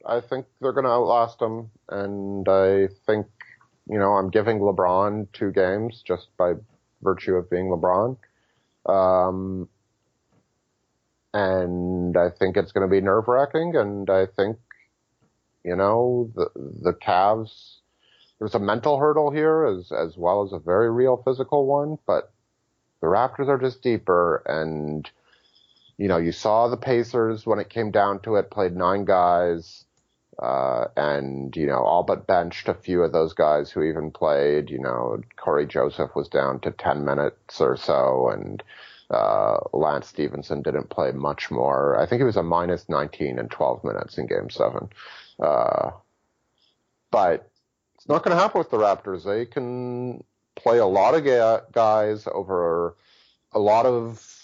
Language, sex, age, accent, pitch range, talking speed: English, male, 30-49, American, 90-120 Hz, 160 wpm